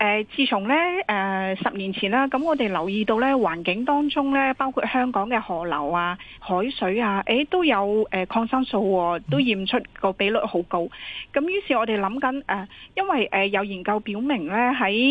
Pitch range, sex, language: 190-265 Hz, female, Chinese